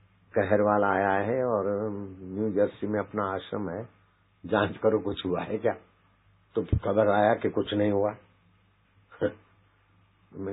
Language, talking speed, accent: Hindi, 140 wpm, native